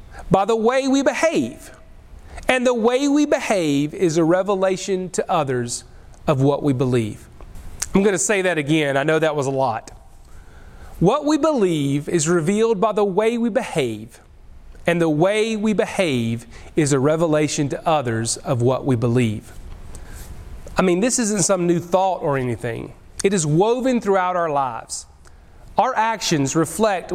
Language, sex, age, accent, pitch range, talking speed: English, male, 40-59, American, 140-215 Hz, 160 wpm